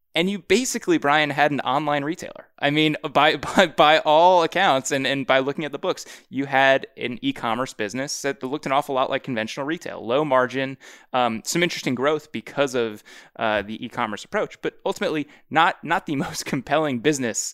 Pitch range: 120-150 Hz